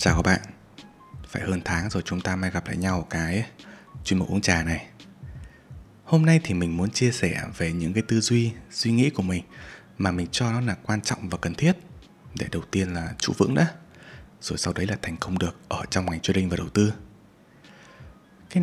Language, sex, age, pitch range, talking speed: Vietnamese, male, 20-39, 85-115 Hz, 220 wpm